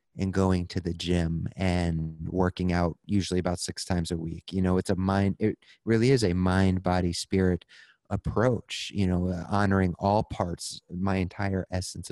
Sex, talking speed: male, 175 wpm